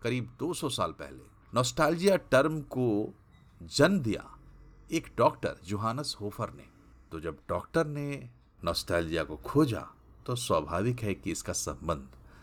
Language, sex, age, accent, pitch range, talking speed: Hindi, male, 50-69, native, 85-130 Hz, 130 wpm